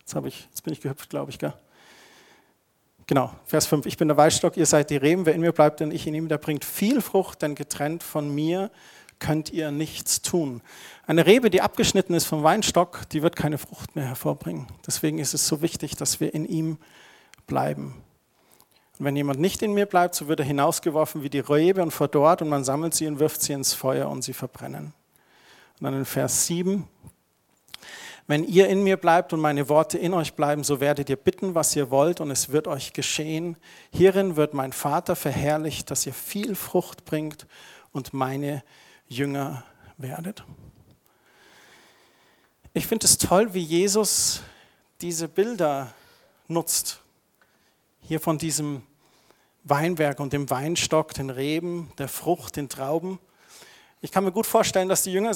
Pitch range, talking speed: 145-175 Hz, 175 wpm